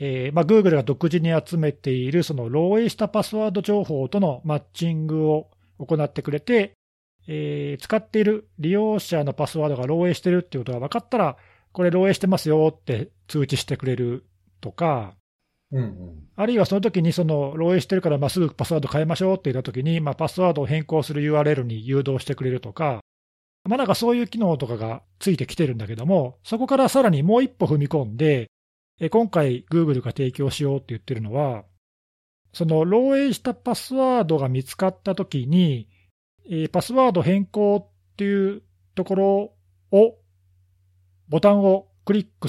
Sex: male